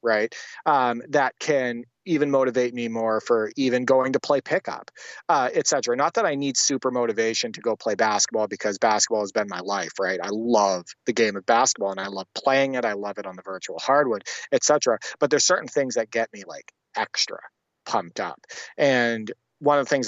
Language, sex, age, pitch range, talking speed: English, male, 30-49, 115-140 Hz, 205 wpm